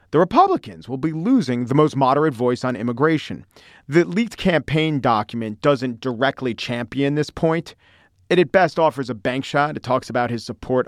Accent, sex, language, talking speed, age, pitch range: American, male, English, 175 wpm, 40-59, 115-155 Hz